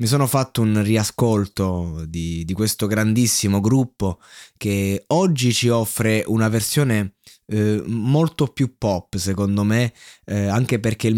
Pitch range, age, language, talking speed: 105-130 Hz, 20-39, Italian, 140 wpm